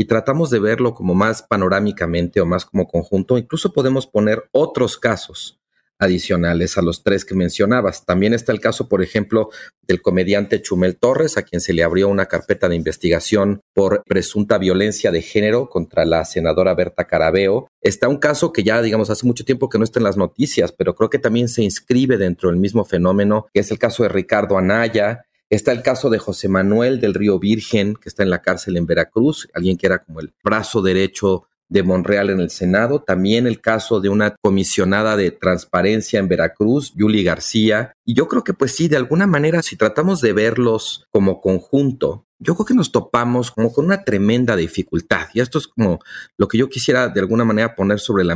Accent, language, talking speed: Mexican, Spanish, 200 wpm